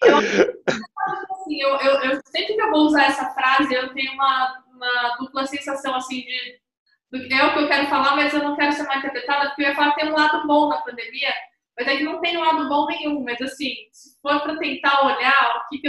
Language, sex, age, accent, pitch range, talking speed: Portuguese, female, 20-39, Brazilian, 270-310 Hz, 230 wpm